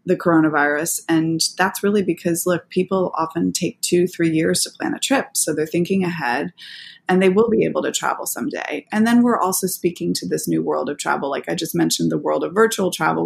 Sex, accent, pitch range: female, American, 160-190 Hz